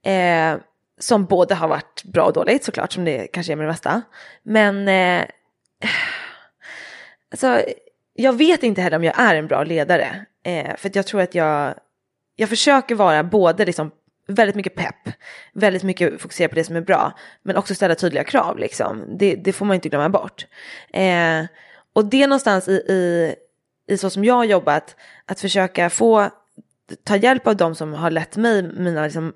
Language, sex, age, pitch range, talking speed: Swedish, female, 20-39, 160-210 Hz, 190 wpm